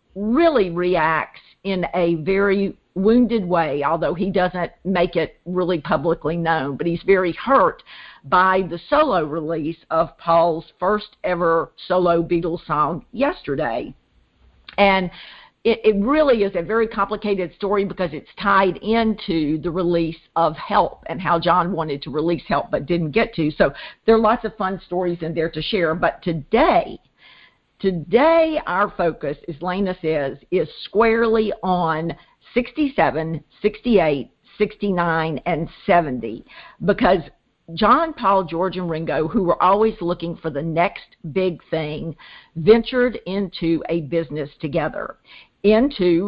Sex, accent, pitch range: female, American, 165-215 Hz